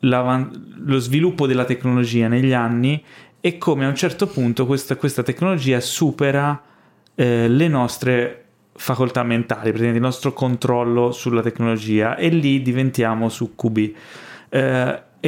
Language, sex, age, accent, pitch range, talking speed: Italian, male, 20-39, native, 115-130 Hz, 125 wpm